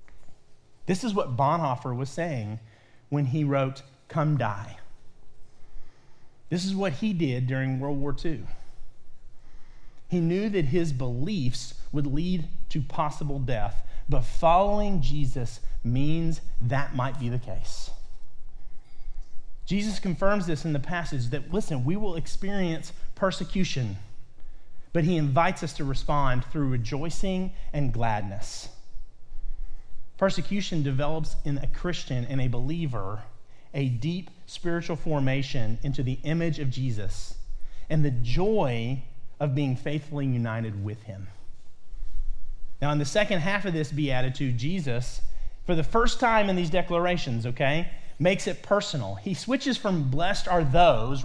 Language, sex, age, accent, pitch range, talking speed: English, male, 30-49, American, 125-170 Hz, 130 wpm